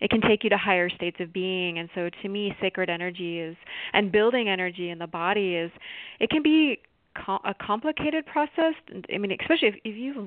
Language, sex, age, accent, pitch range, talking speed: English, female, 30-49, American, 165-200 Hz, 210 wpm